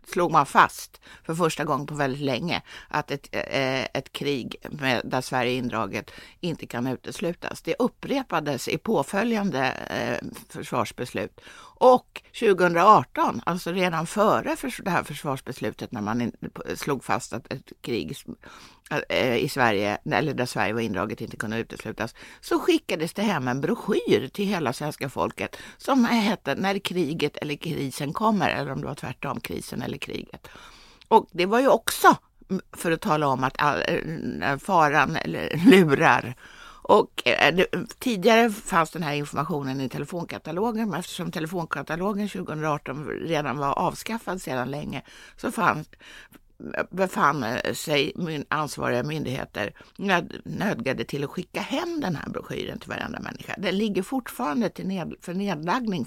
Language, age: English, 60-79